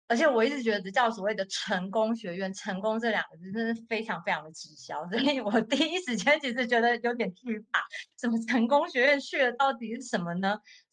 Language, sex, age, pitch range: Chinese, female, 30-49, 195-250 Hz